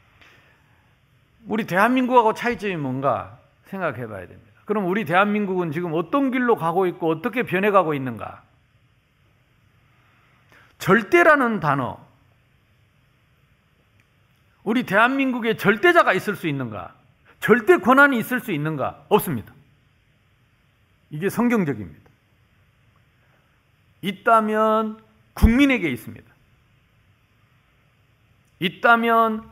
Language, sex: Korean, male